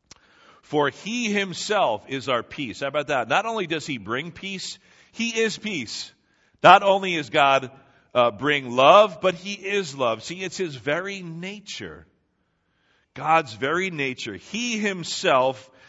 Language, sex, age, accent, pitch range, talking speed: English, male, 50-69, American, 130-185 Hz, 145 wpm